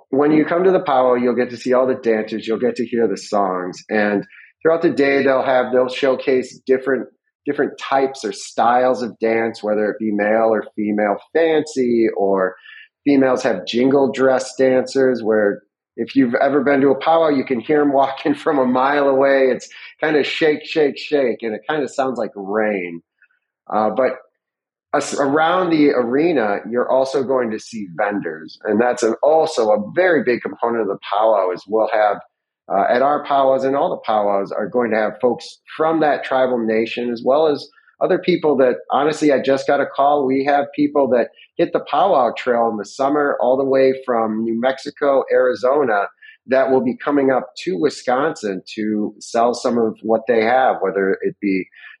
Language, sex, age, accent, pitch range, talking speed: English, male, 30-49, American, 110-140 Hz, 195 wpm